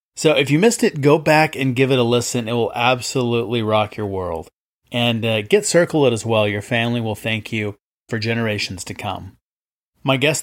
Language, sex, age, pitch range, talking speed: English, male, 30-49, 115-150 Hz, 205 wpm